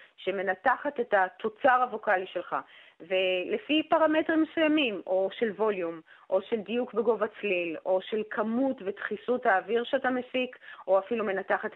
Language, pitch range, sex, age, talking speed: Hebrew, 190-265 Hz, female, 30-49, 135 wpm